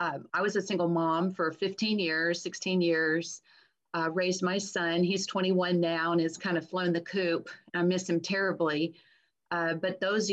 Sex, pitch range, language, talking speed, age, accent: female, 165-185 Hz, English, 185 wpm, 40-59, American